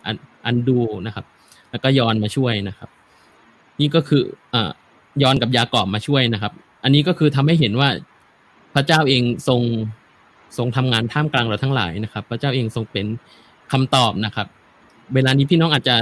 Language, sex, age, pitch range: Thai, male, 20-39, 115-145 Hz